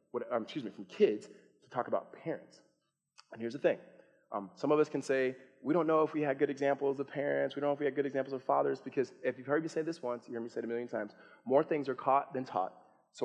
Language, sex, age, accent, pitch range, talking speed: English, male, 20-39, American, 130-170 Hz, 285 wpm